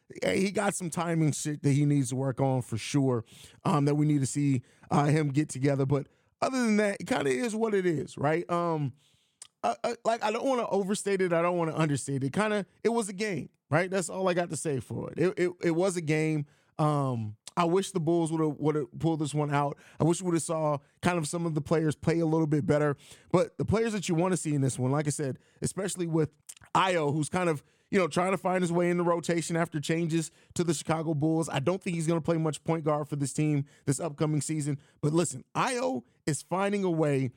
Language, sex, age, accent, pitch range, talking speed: English, male, 30-49, American, 145-185 Hz, 255 wpm